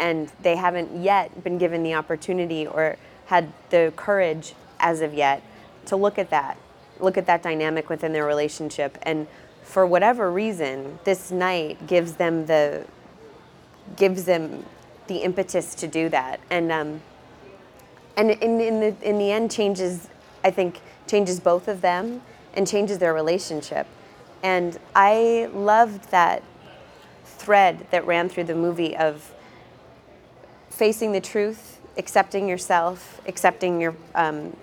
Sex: female